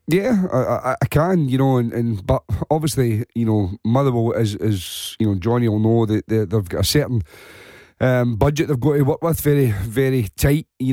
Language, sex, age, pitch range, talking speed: English, male, 40-59, 115-140 Hz, 215 wpm